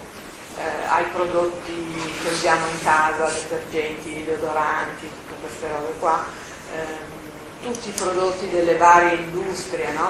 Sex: female